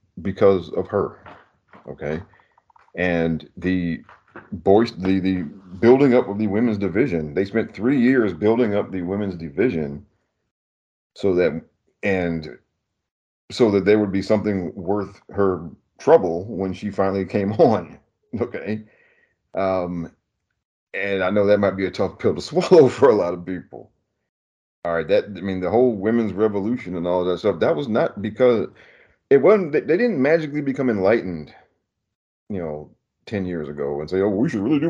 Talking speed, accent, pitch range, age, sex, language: 165 wpm, American, 85-105 Hz, 40-59, male, English